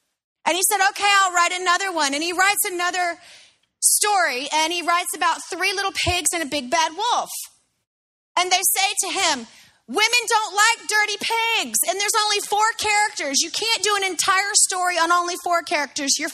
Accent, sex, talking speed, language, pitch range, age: American, female, 185 wpm, English, 300-390 Hz, 30-49